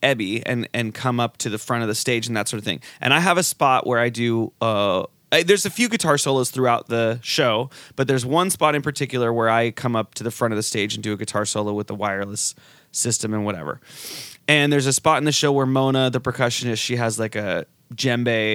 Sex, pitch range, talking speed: male, 115-145 Hz, 245 wpm